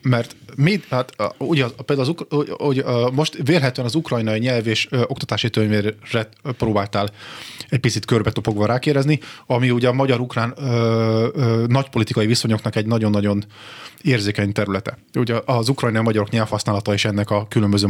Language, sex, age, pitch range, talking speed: Hungarian, male, 30-49, 115-135 Hz, 150 wpm